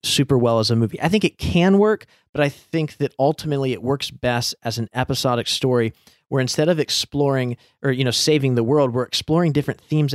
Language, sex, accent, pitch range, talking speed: English, male, American, 120-150 Hz, 215 wpm